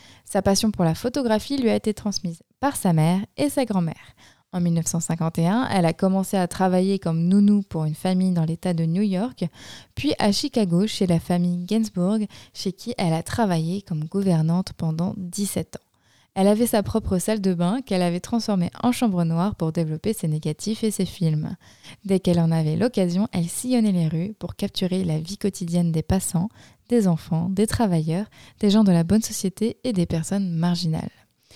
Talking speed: 190 wpm